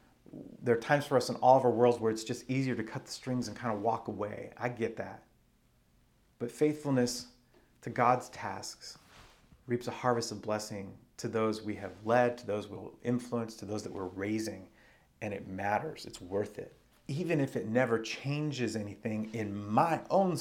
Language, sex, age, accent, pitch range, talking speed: English, male, 30-49, American, 110-125 Hz, 190 wpm